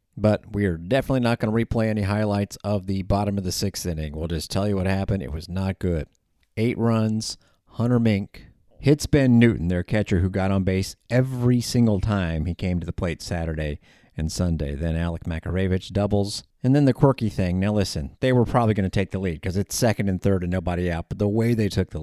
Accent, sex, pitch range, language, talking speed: American, male, 90-115 Hz, English, 230 wpm